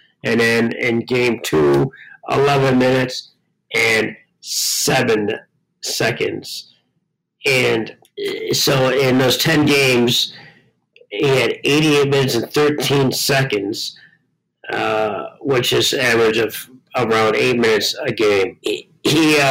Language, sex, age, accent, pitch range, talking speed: English, male, 40-59, American, 120-150 Hz, 110 wpm